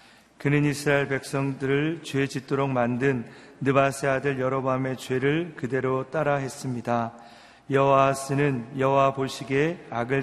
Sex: male